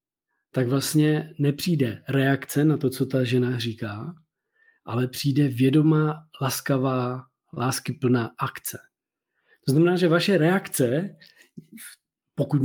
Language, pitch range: Czech, 125-155 Hz